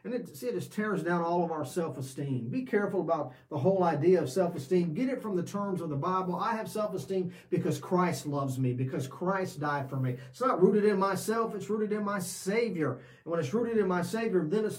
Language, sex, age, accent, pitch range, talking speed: English, male, 40-59, American, 155-195 Hz, 230 wpm